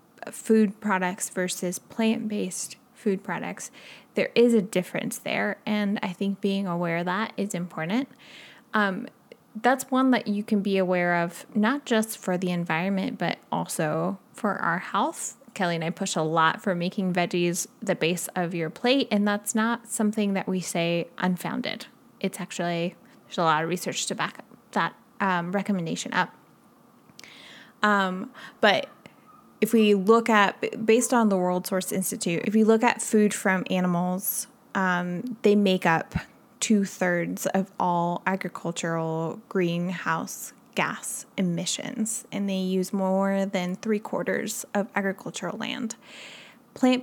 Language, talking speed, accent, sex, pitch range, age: English, 150 wpm, American, female, 180-220 Hz, 10-29